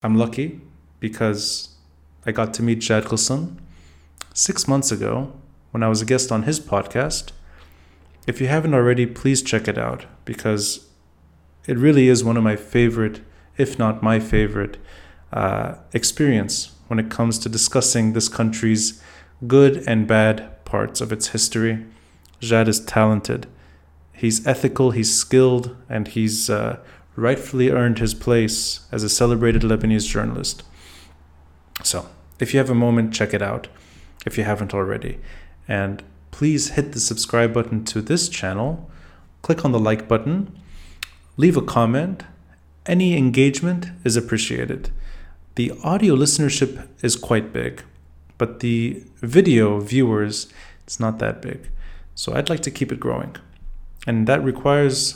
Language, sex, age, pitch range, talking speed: English, male, 30-49, 80-125 Hz, 145 wpm